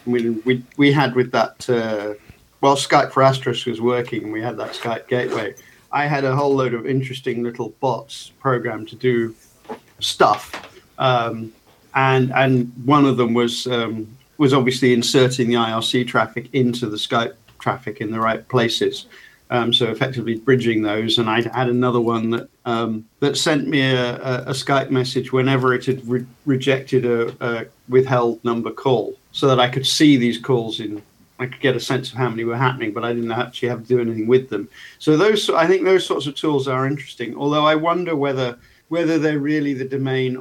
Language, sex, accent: English, male, British